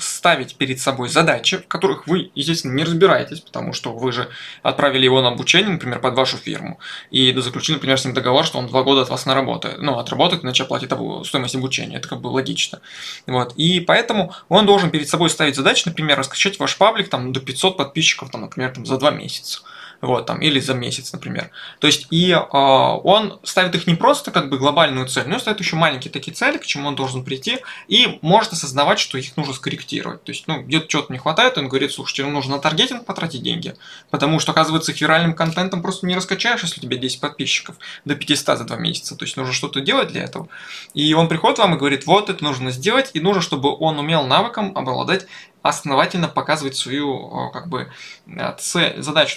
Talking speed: 205 wpm